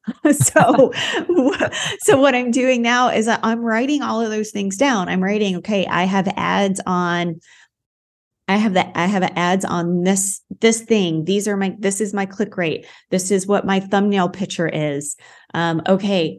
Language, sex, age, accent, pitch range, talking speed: English, female, 30-49, American, 175-210 Hz, 175 wpm